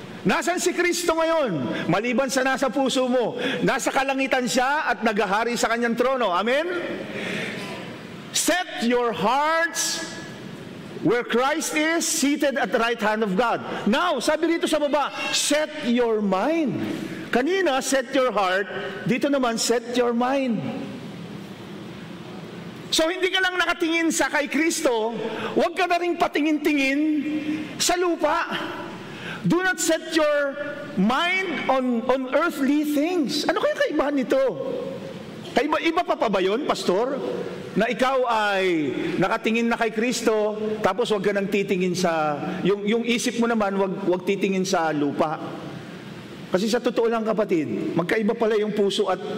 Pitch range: 210-305 Hz